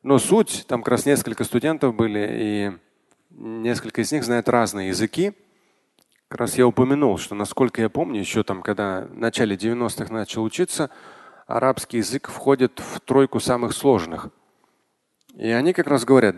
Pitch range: 110-140 Hz